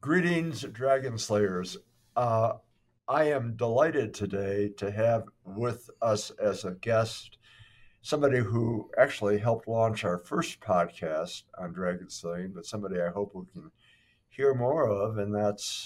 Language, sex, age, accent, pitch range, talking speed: English, male, 60-79, American, 100-120 Hz, 140 wpm